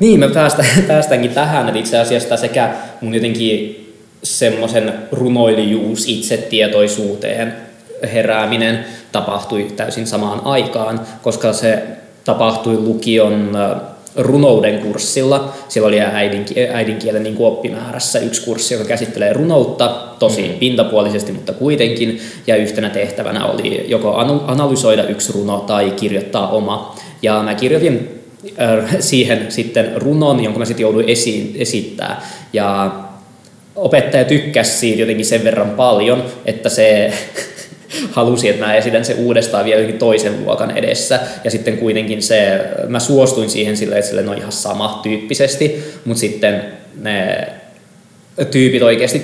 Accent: native